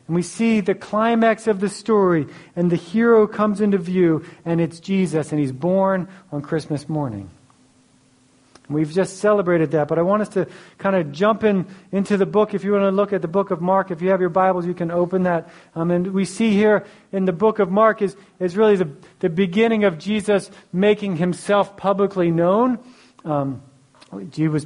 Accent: American